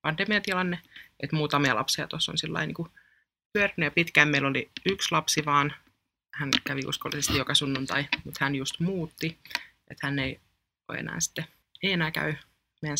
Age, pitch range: 20-39, 135-155 Hz